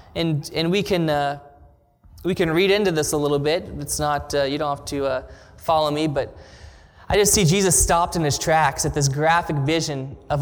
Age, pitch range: 20-39, 140-185 Hz